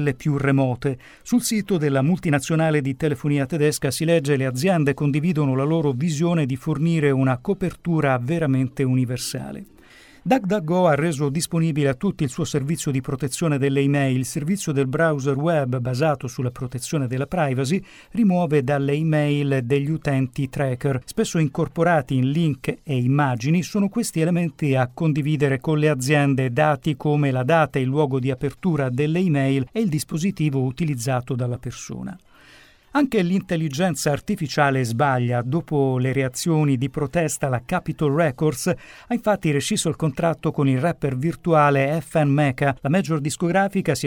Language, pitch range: Italian, 135-170 Hz